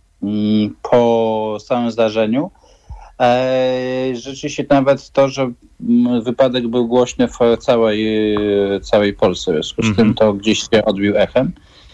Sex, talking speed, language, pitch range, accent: male, 115 wpm, Polish, 110-135 Hz, native